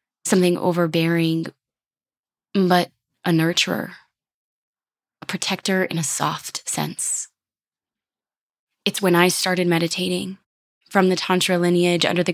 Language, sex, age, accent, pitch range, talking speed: English, female, 20-39, American, 165-185 Hz, 105 wpm